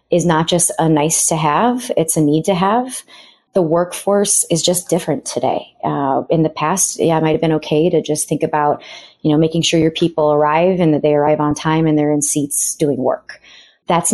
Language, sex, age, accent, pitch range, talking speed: English, female, 30-49, American, 150-175 Hz, 220 wpm